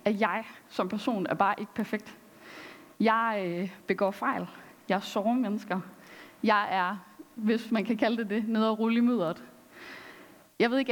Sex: female